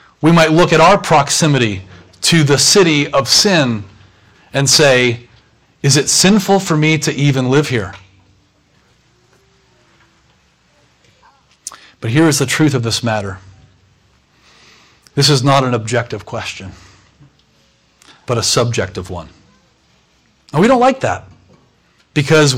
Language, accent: English, American